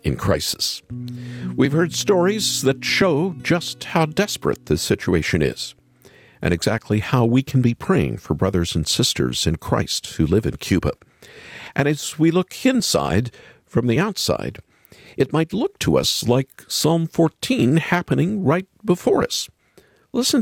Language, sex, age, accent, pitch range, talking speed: English, male, 50-69, American, 95-155 Hz, 150 wpm